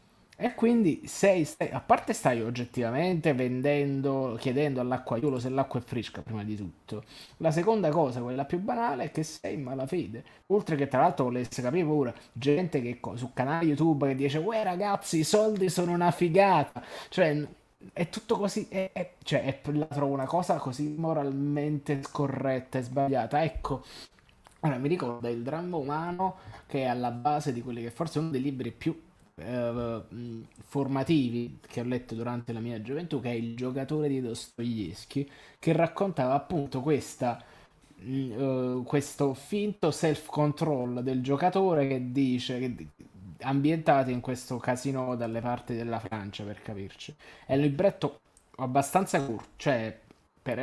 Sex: male